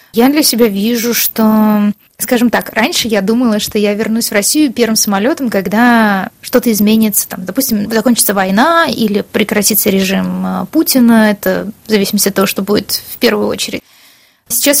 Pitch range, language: 210-235 Hz, Russian